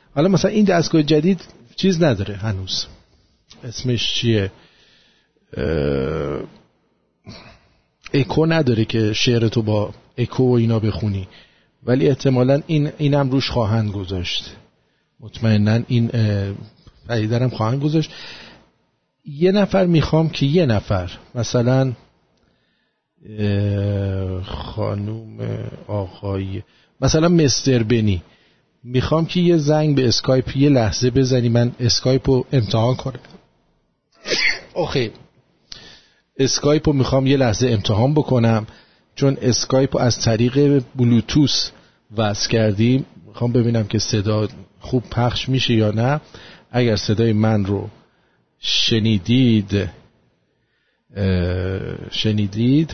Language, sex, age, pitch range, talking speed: English, male, 50-69, 105-135 Hz, 100 wpm